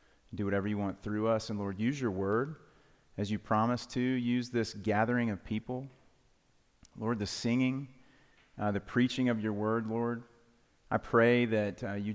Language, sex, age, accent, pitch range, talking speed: English, male, 30-49, American, 105-120 Hz, 175 wpm